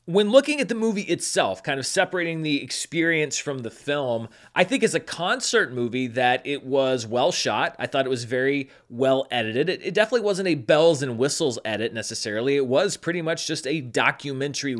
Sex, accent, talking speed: male, American, 195 wpm